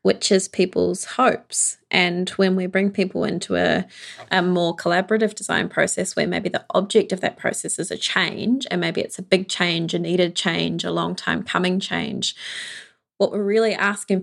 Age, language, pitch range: 20-39, English, 180-205 Hz